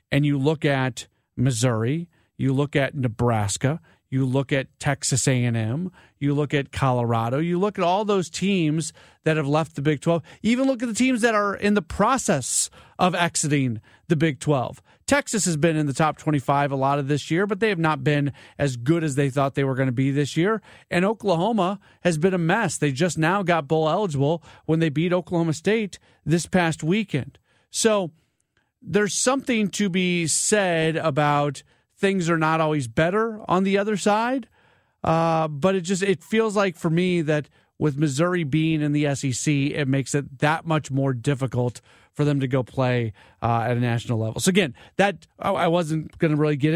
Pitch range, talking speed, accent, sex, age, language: 140-180 Hz, 195 wpm, American, male, 40-59, English